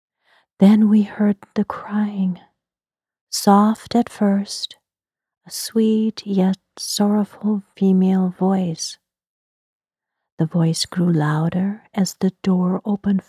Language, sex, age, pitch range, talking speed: English, female, 40-59, 175-215 Hz, 100 wpm